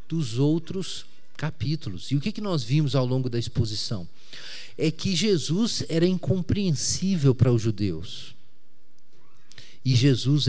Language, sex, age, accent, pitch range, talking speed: Portuguese, male, 40-59, Brazilian, 125-160 Hz, 125 wpm